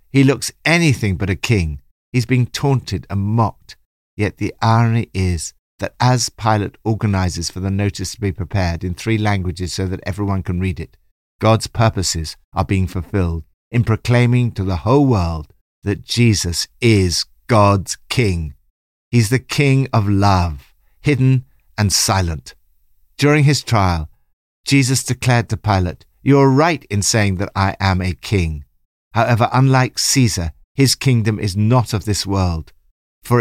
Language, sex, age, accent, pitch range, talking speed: English, male, 60-79, British, 90-120 Hz, 155 wpm